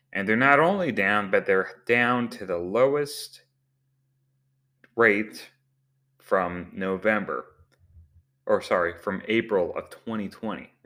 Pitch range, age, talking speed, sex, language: 90-120 Hz, 30-49, 110 wpm, male, English